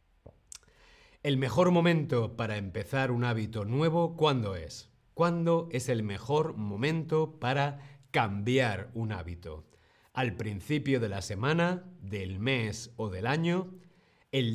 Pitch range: 105-150 Hz